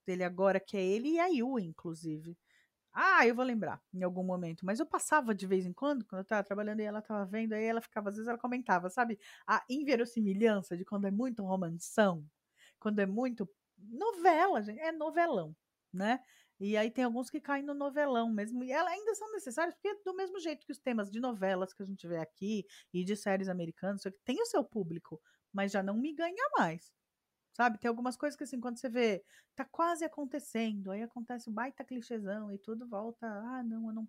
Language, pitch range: Portuguese, 195-270 Hz